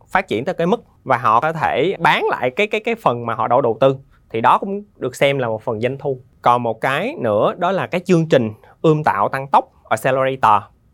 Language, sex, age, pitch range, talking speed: Vietnamese, male, 20-39, 115-165 Hz, 245 wpm